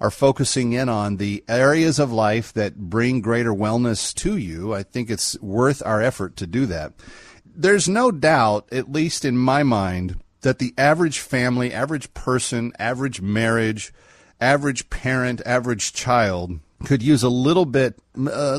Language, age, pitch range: English, 40-59, 105-135 Hz